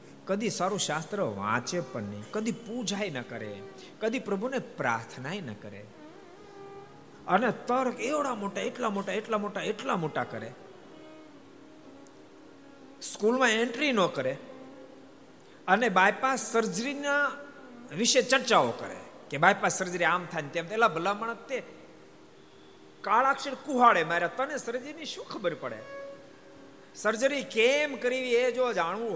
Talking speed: 80 wpm